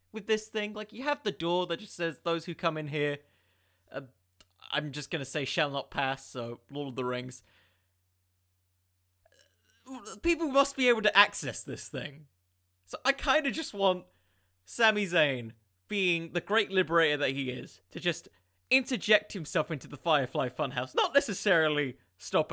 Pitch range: 130-185 Hz